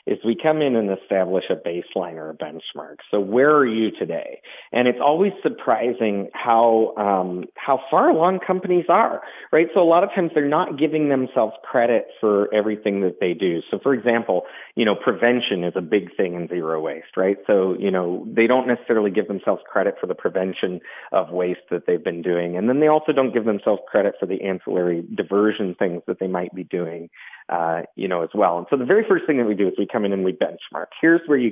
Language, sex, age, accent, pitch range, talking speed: English, male, 40-59, American, 95-140 Hz, 220 wpm